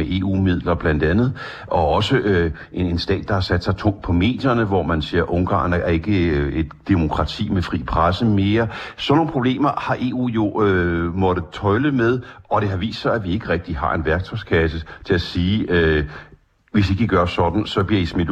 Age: 60-79